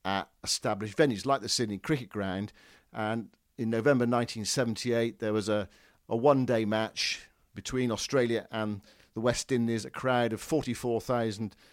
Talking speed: 145 wpm